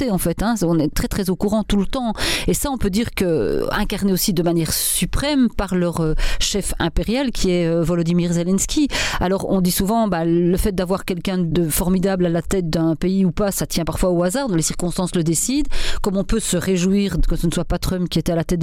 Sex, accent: female, French